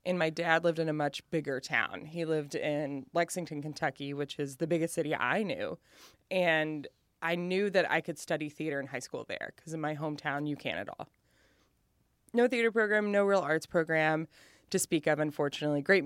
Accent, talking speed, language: American, 200 wpm, English